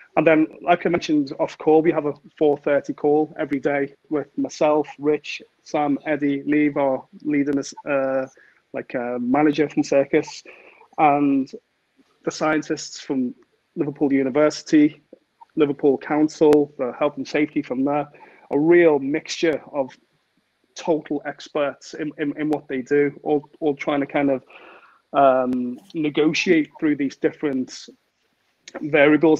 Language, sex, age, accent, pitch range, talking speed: English, male, 30-49, British, 145-165 Hz, 135 wpm